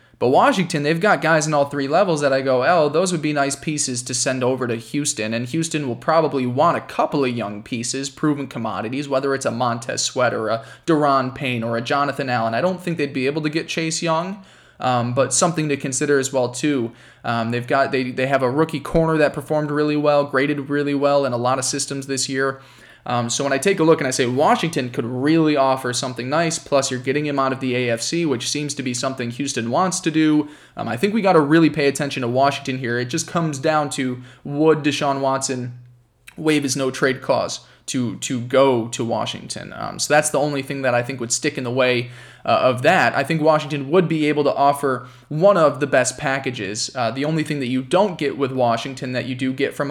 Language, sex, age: English, male, 20-39